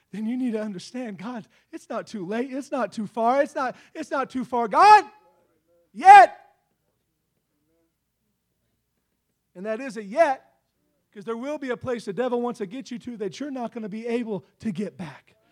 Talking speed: 190 wpm